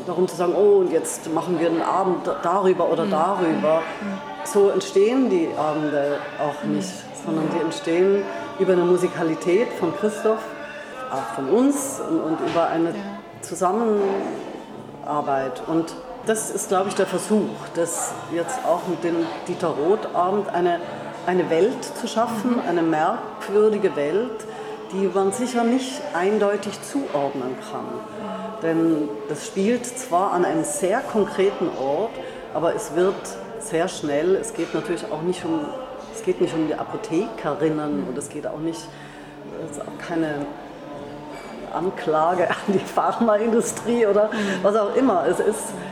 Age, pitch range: 40-59, 165-220 Hz